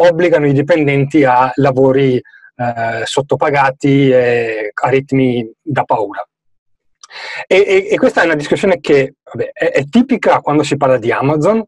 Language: Italian